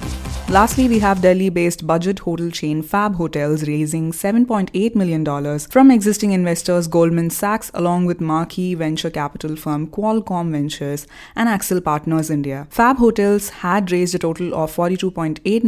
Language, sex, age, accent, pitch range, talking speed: English, female, 20-39, Indian, 150-200 Hz, 140 wpm